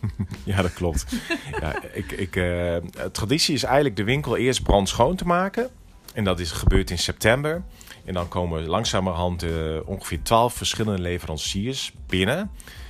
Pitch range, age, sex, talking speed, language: 90-120 Hz, 40-59, male, 155 wpm, Dutch